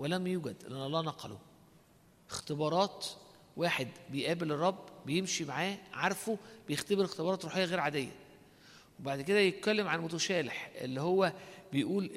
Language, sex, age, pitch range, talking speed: Arabic, male, 50-69, 150-200 Hz, 125 wpm